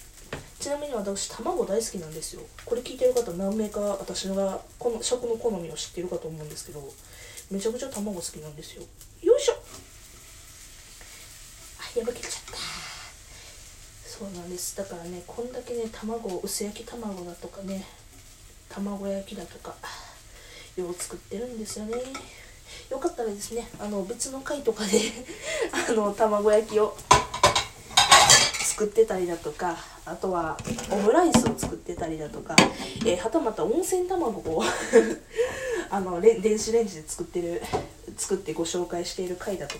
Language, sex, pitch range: Japanese, female, 170-240 Hz